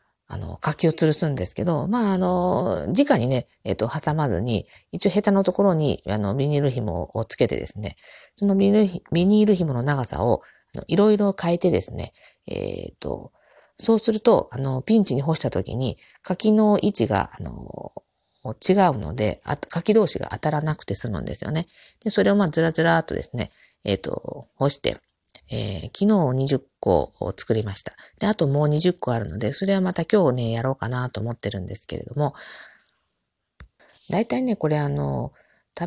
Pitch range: 125-195 Hz